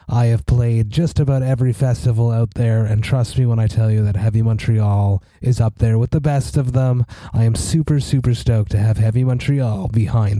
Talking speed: 215 wpm